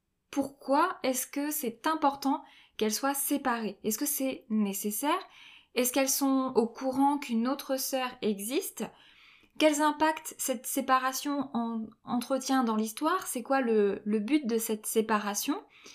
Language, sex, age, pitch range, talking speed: French, female, 20-39, 230-285 Hz, 135 wpm